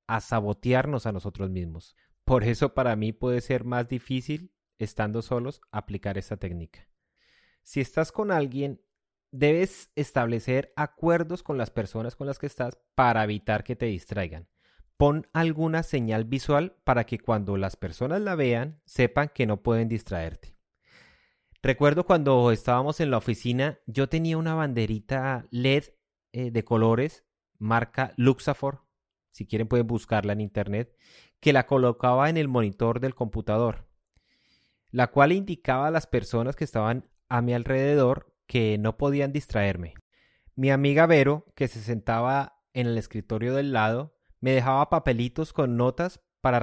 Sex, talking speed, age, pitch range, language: male, 150 wpm, 30-49, 110-140 Hz, Spanish